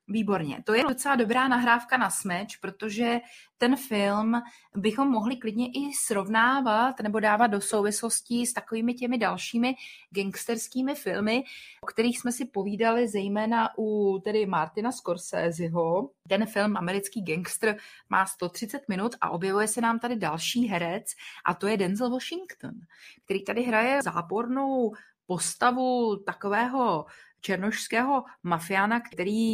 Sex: female